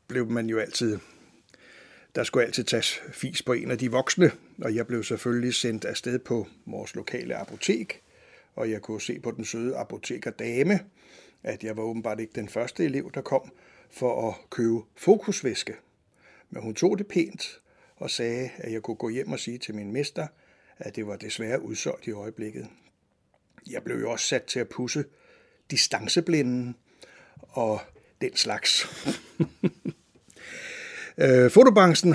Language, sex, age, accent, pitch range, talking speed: Danish, male, 60-79, native, 115-150 Hz, 155 wpm